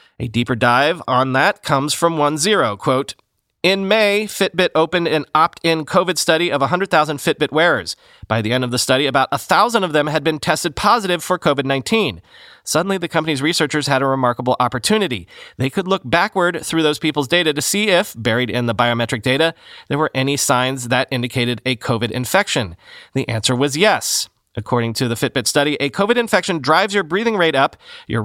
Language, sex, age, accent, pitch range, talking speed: English, male, 30-49, American, 125-175 Hz, 190 wpm